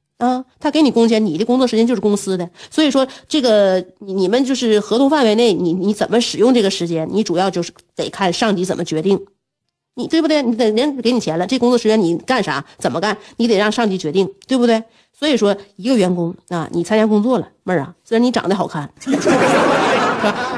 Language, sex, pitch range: Chinese, female, 185-260 Hz